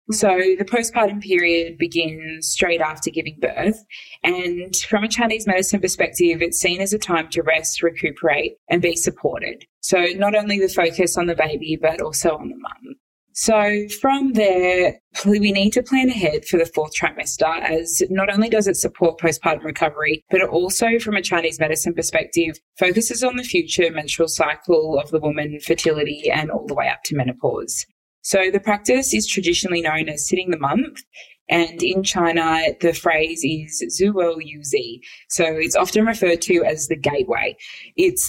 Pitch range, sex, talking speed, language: 155-195 Hz, female, 175 wpm, English